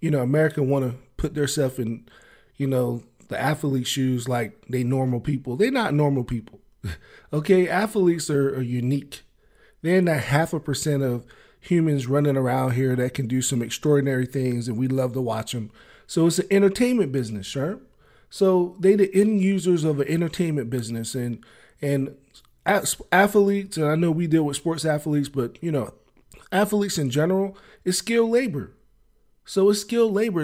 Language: English